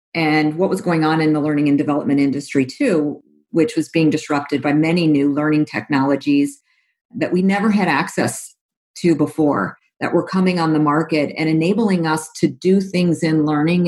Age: 40-59